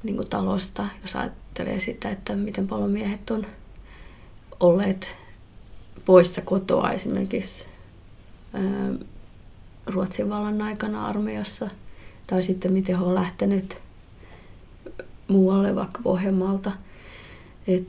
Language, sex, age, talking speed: Finnish, female, 30-49, 85 wpm